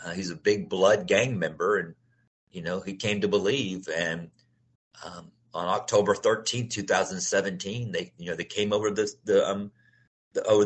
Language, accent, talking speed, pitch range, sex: English, American, 170 wpm, 90-120 Hz, male